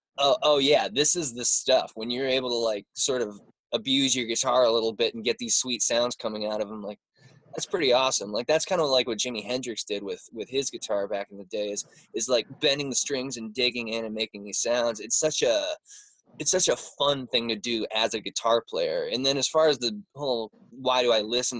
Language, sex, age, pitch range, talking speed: English, male, 20-39, 110-135 Hz, 245 wpm